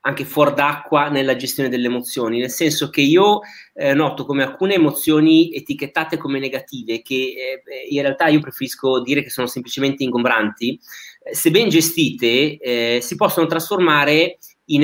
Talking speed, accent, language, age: 160 wpm, native, Italian, 30-49